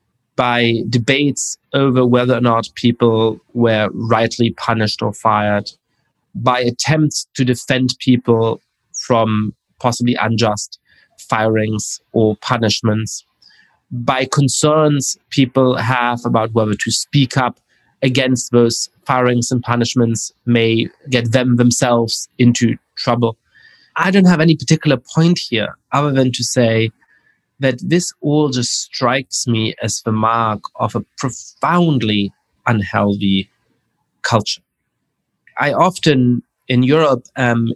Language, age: English, 20-39